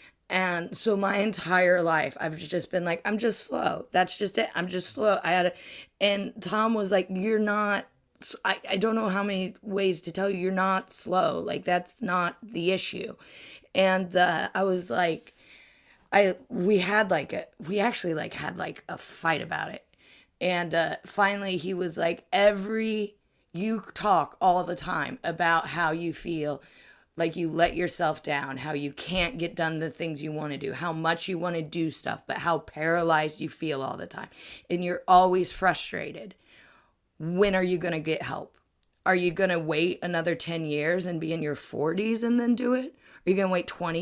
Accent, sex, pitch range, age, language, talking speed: American, female, 165-200 Hz, 20-39, English, 200 wpm